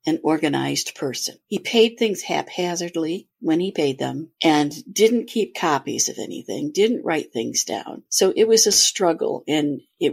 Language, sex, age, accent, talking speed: English, female, 60-79, American, 165 wpm